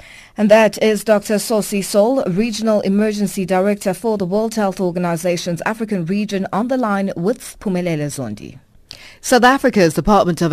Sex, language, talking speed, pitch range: female, English, 150 wpm, 170-220 Hz